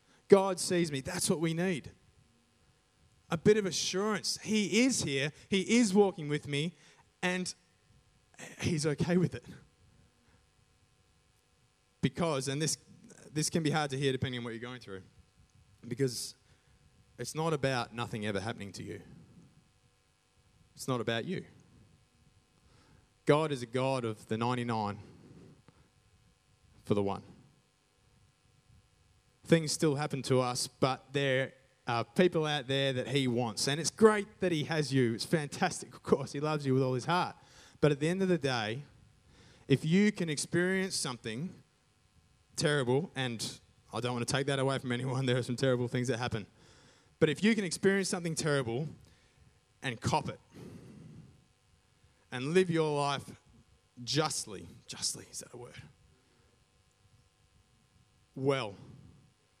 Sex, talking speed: male, 145 wpm